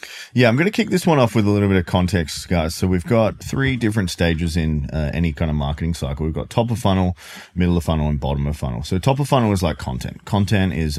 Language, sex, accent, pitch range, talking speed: English, male, Australian, 75-95 Hz, 270 wpm